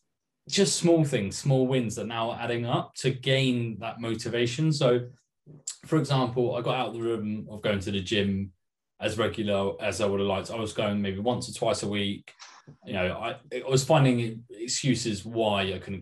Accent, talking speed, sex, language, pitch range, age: British, 200 wpm, male, English, 110-145 Hz, 20-39